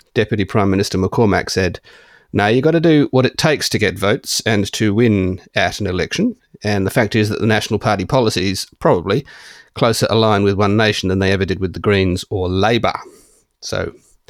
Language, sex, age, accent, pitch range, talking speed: English, male, 40-59, Australian, 95-110 Hz, 195 wpm